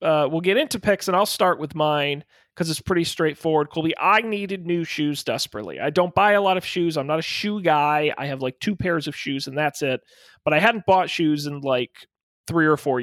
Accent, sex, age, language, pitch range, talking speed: American, male, 30-49, English, 150-195 Hz, 240 wpm